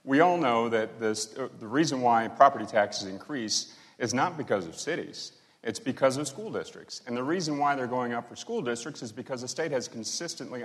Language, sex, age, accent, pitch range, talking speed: English, male, 40-59, American, 110-135 Hz, 215 wpm